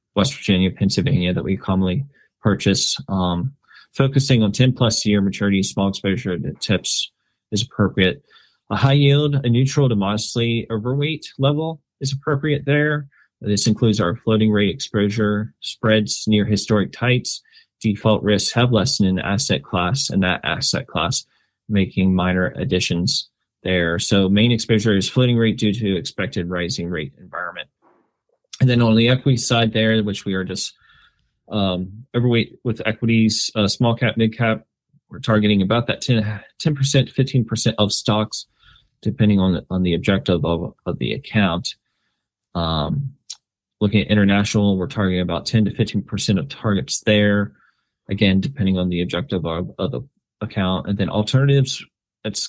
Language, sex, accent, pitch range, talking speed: English, male, American, 100-120 Hz, 150 wpm